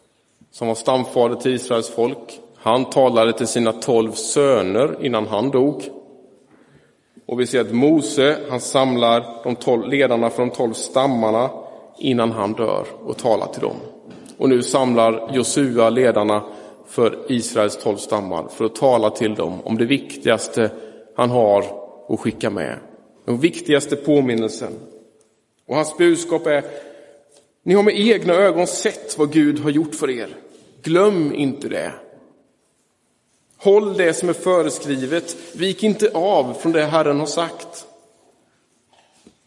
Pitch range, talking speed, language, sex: 115-155 Hz, 140 wpm, Swedish, male